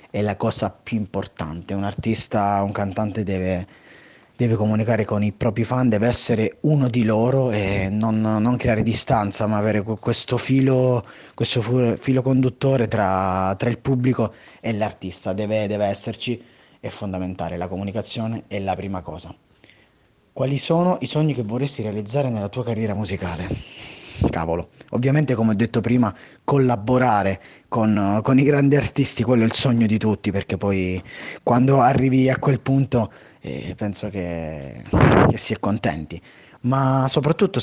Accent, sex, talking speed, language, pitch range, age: native, male, 150 wpm, Italian, 105-130 Hz, 30-49